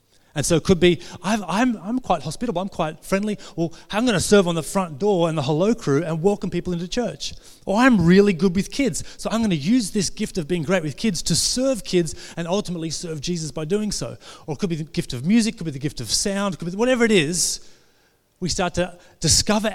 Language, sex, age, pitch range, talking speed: English, male, 30-49, 160-210 Hz, 250 wpm